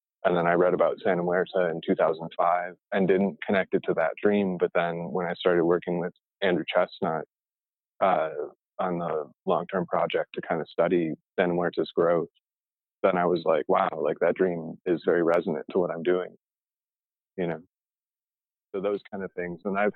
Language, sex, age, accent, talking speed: English, male, 30-49, American, 185 wpm